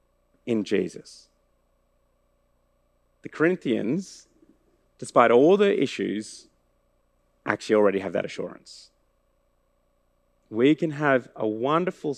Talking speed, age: 90 wpm, 40-59